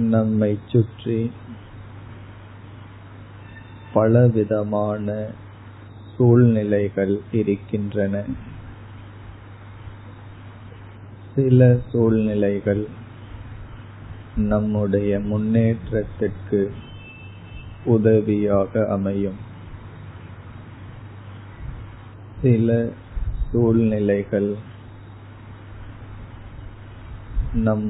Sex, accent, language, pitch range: male, native, Tamil, 100-110 Hz